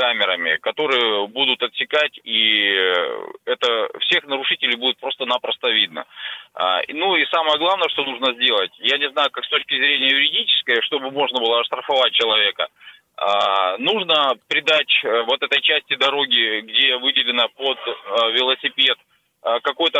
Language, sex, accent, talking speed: Russian, male, native, 125 wpm